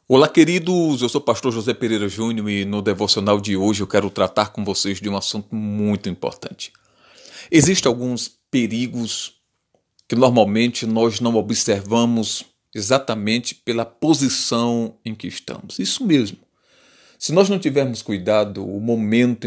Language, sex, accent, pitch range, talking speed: Portuguese, male, Brazilian, 115-155 Hz, 145 wpm